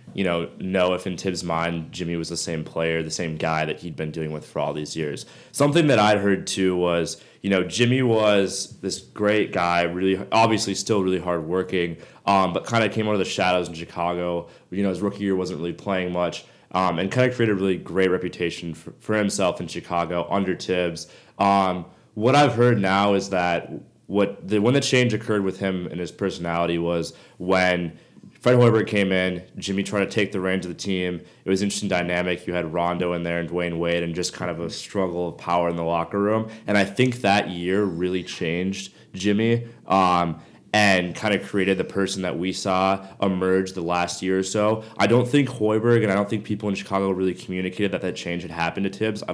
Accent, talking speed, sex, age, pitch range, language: American, 220 wpm, male, 20-39, 90-105 Hz, English